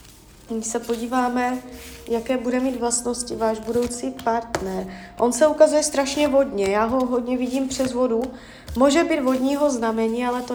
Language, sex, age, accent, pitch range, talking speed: Czech, female, 20-39, native, 225-260 Hz, 155 wpm